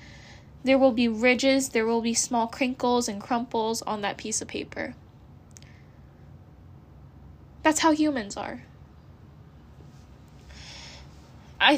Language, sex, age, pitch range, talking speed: English, female, 10-29, 220-260 Hz, 105 wpm